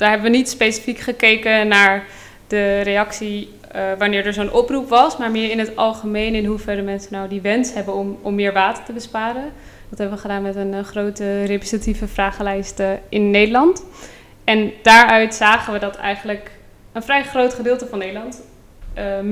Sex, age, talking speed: female, 20-39, 185 wpm